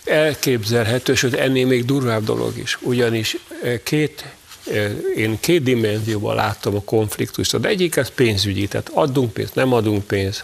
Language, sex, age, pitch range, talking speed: Hungarian, male, 50-69, 110-125 Hz, 145 wpm